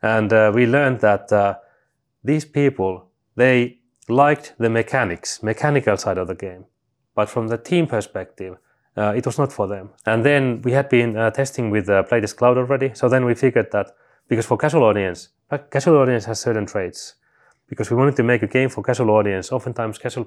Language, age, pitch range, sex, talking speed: English, 30-49, 105-130 Hz, male, 195 wpm